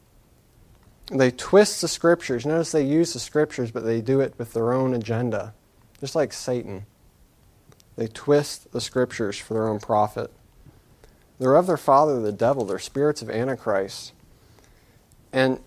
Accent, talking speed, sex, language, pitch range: American, 150 wpm, male, English, 115-155 Hz